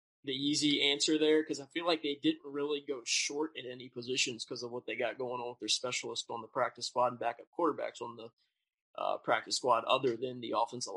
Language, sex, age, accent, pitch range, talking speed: English, male, 20-39, American, 130-150 Hz, 230 wpm